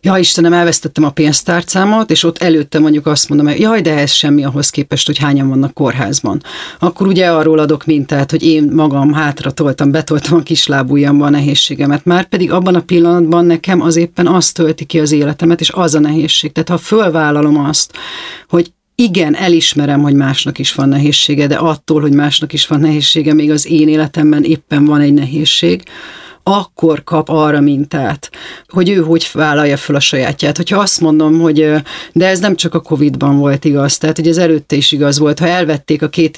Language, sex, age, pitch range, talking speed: Hungarian, female, 40-59, 145-170 Hz, 190 wpm